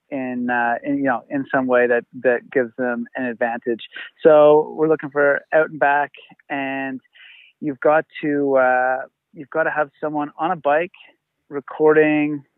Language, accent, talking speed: English, American, 165 wpm